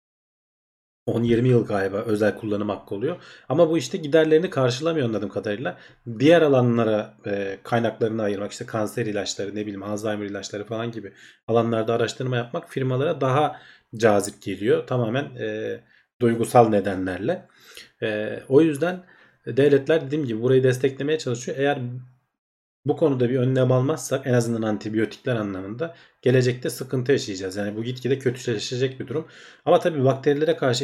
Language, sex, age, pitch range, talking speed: Turkish, male, 40-59, 110-135 Hz, 135 wpm